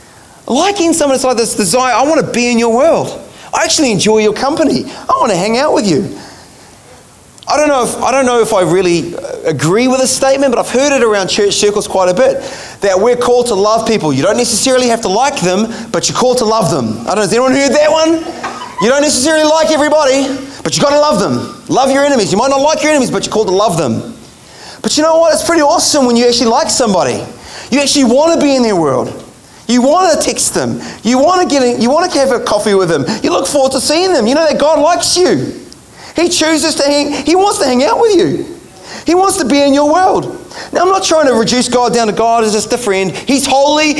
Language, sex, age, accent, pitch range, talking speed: English, male, 30-49, Australian, 235-300 Hz, 250 wpm